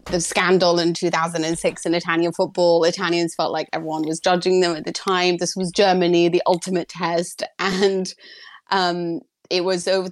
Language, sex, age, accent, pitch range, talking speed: English, female, 30-49, British, 180-240 Hz, 165 wpm